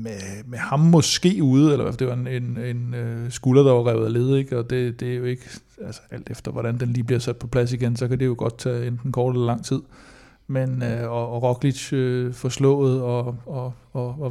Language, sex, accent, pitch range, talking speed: Danish, male, native, 120-135 Hz, 255 wpm